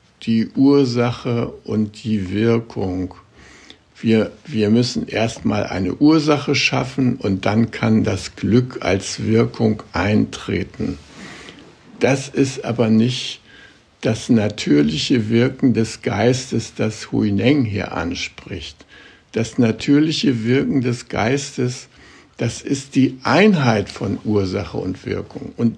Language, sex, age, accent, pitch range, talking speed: German, male, 60-79, German, 105-125 Hz, 110 wpm